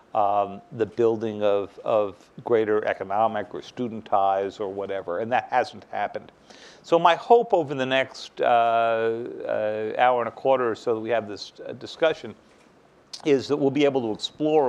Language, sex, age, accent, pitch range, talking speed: English, male, 50-69, American, 110-135 Hz, 170 wpm